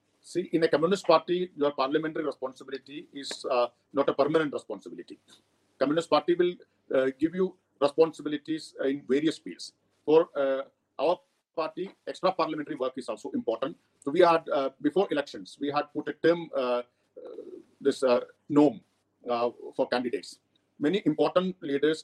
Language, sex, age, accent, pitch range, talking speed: English, male, 50-69, Indian, 145-185 Hz, 150 wpm